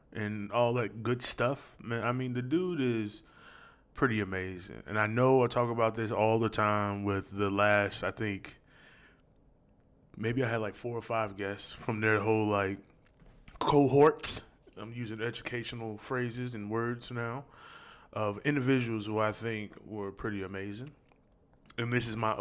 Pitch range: 105-125 Hz